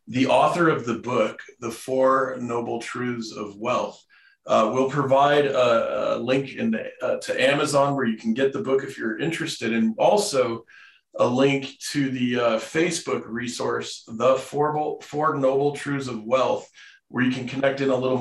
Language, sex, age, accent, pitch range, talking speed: English, male, 40-59, American, 120-140 Hz, 180 wpm